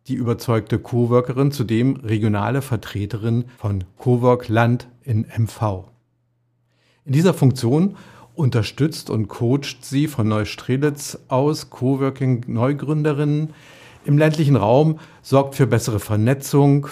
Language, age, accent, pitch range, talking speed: German, 50-69, German, 115-140 Hz, 105 wpm